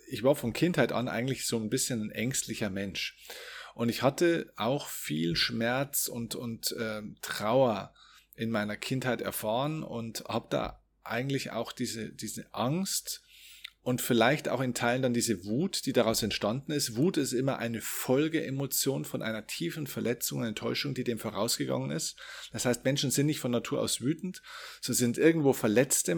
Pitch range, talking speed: 115-150 Hz, 165 wpm